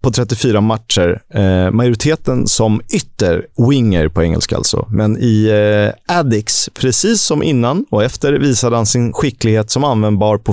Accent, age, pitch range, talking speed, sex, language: native, 30-49, 105-135 Hz, 140 wpm, male, Swedish